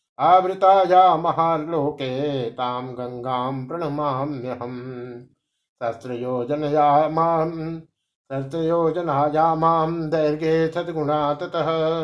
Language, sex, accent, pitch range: Hindi, male, native, 130-165 Hz